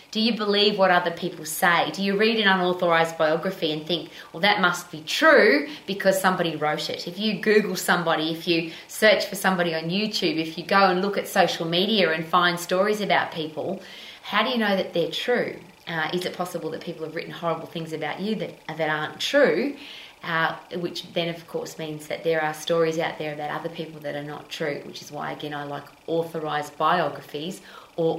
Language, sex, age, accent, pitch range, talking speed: English, female, 20-39, Australian, 160-190 Hz, 210 wpm